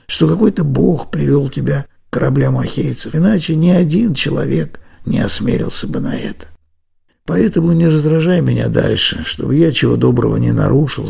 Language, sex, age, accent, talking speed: Russian, male, 60-79, native, 150 wpm